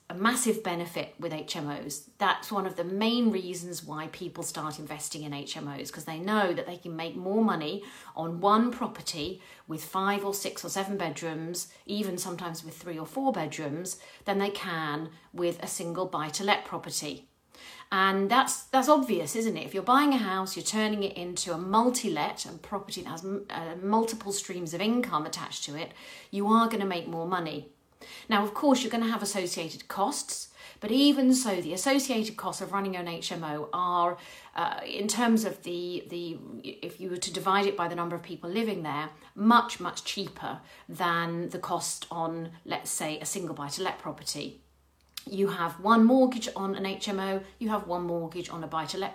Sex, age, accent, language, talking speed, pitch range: female, 40-59, British, English, 185 wpm, 165-210 Hz